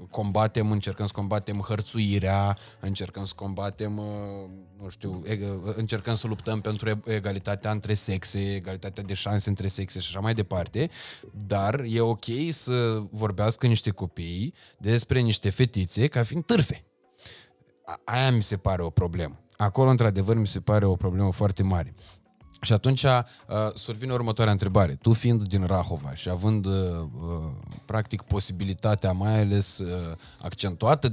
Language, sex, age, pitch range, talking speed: Romanian, male, 20-39, 95-120 Hz, 135 wpm